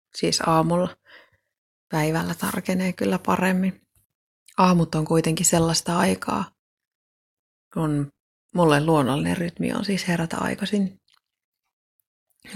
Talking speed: 90 wpm